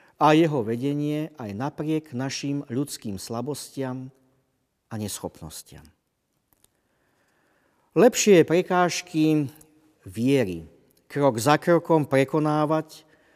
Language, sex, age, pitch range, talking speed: Slovak, male, 50-69, 115-155 Hz, 80 wpm